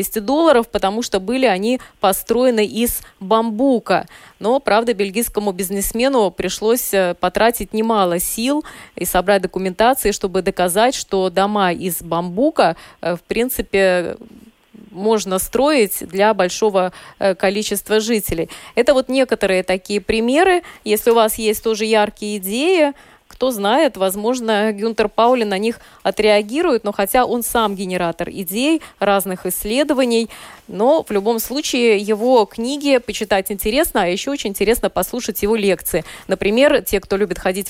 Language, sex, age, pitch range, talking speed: Russian, female, 20-39, 200-245 Hz, 130 wpm